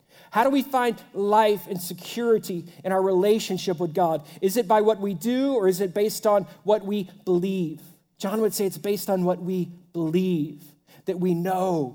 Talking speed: 190 wpm